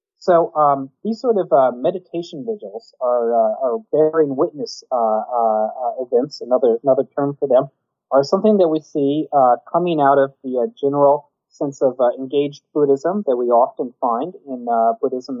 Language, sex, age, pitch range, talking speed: English, male, 30-49, 130-215 Hz, 175 wpm